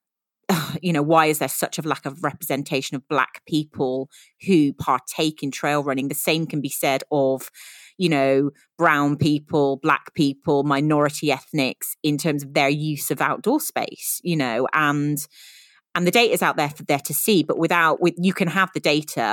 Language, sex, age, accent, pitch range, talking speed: English, female, 30-49, British, 140-160 Hz, 190 wpm